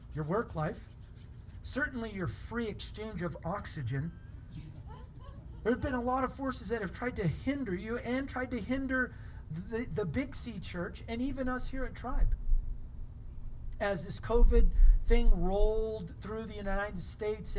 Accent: American